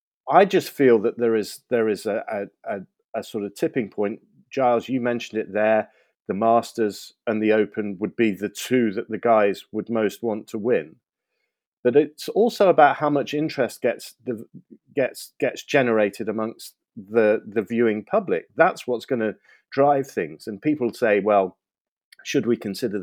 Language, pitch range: English, 105-130 Hz